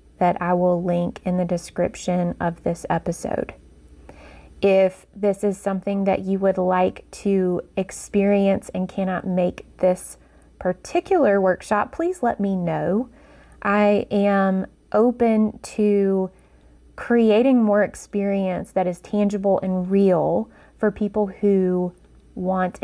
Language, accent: English, American